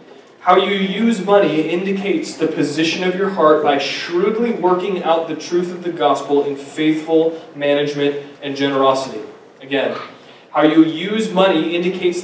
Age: 20-39